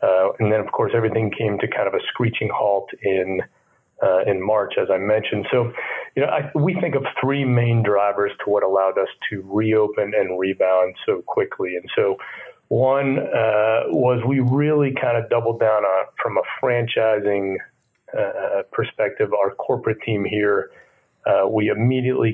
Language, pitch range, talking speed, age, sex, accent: English, 100-140 Hz, 170 wpm, 40-59, male, American